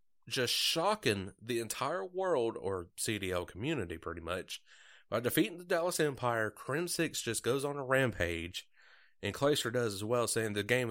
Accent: American